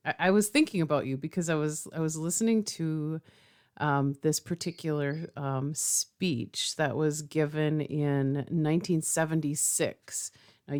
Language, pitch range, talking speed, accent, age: English, 140-170 Hz, 130 wpm, American, 40-59